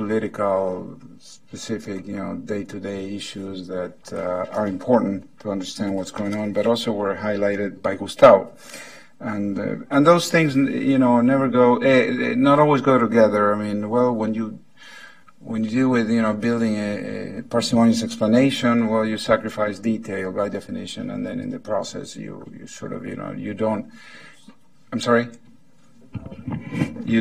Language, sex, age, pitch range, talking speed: English, male, 50-69, 105-140 Hz, 165 wpm